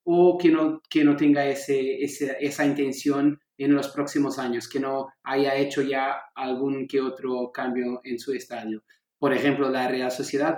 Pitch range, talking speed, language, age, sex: 130-160 Hz, 175 wpm, Portuguese, 30-49, male